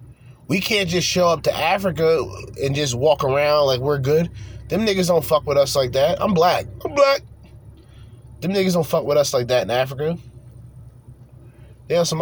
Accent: American